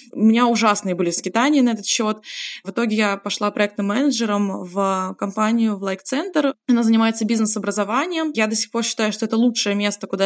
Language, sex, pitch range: Russian, female, 195-235 Hz